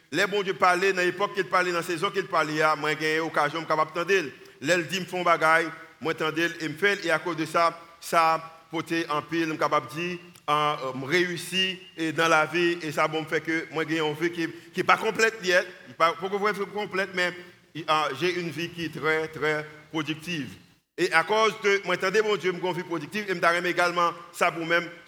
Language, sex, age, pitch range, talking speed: French, male, 50-69, 160-190 Hz, 245 wpm